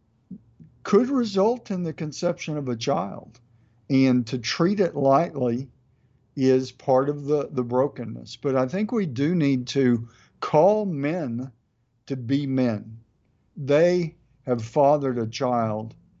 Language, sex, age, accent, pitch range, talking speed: English, male, 50-69, American, 115-145 Hz, 135 wpm